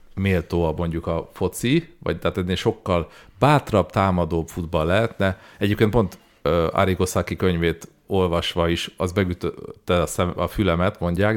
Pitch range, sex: 90-115 Hz, male